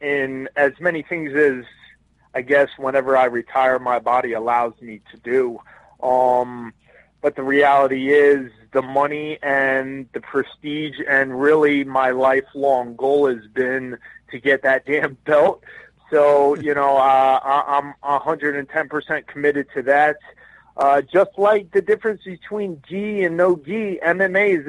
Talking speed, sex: 145 wpm, male